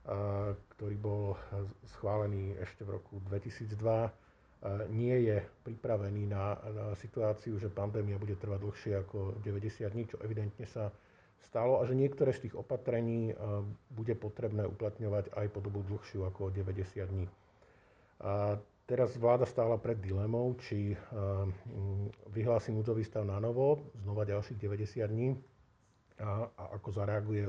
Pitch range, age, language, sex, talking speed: 100-115 Hz, 50-69, Slovak, male, 135 wpm